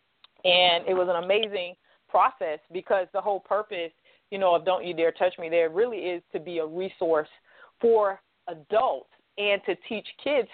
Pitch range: 165-200 Hz